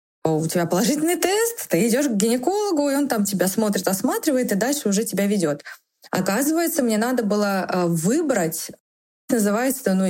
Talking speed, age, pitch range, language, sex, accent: 155 wpm, 20-39, 180-250 Hz, Russian, female, native